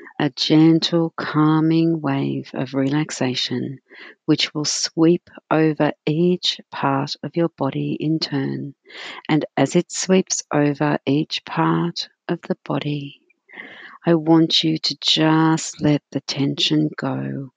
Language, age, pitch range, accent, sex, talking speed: English, 50-69, 140-170 Hz, Australian, female, 125 wpm